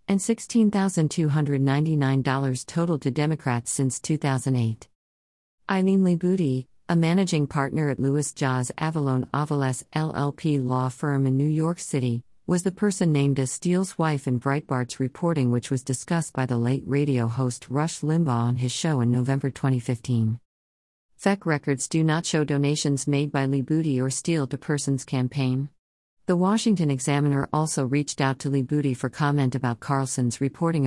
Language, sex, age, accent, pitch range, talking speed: English, female, 50-69, American, 130-155 Hz, 150 wpm